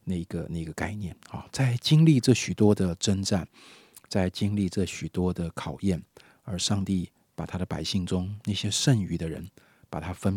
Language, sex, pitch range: Chinese, male, 90-115 Hz